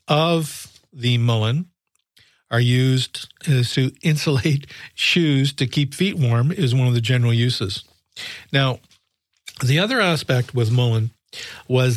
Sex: male